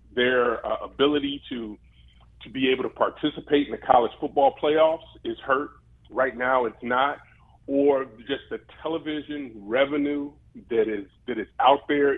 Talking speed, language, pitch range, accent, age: 155 wpm, English, 125-145 Hz, American, 30-49